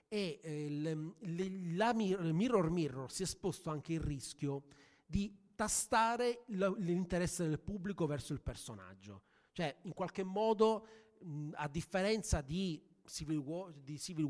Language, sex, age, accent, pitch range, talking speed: Italian, male, 30-49, native, 150-190 Hz, 120 wpm